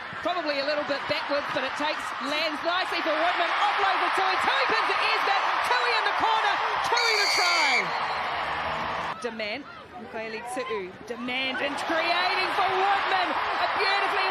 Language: English